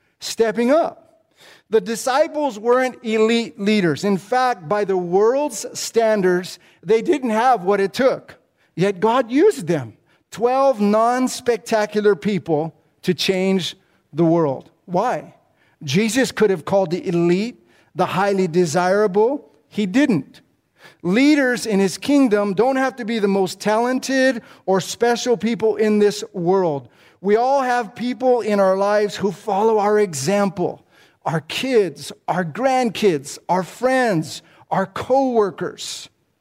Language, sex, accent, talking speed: English, male, American, 130 wpm